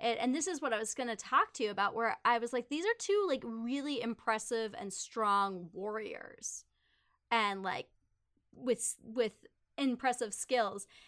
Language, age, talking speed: English, 20-39, 175 wpm